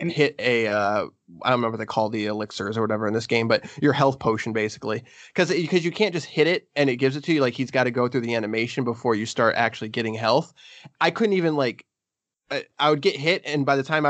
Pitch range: 125-155 Hz